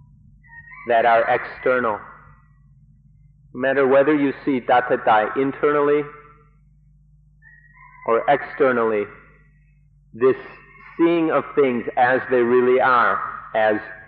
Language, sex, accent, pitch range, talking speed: English, male, American, 130-150 Hz, 90 wpm